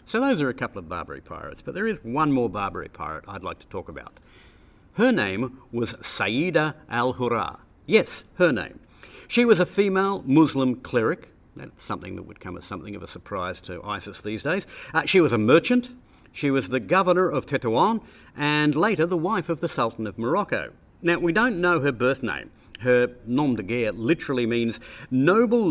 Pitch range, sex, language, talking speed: 115-170 Hz, male, English, 190 wpm